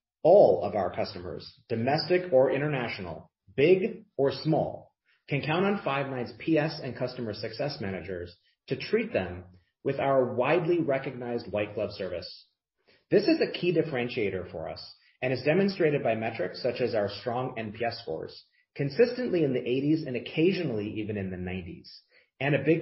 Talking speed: 160 wpm